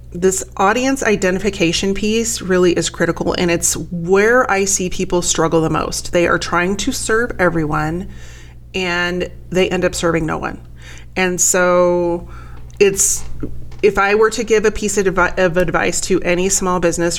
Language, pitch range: English, 165-200 Hz